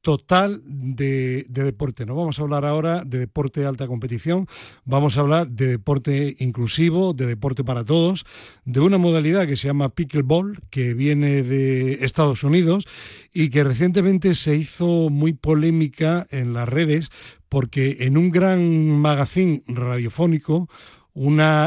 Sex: male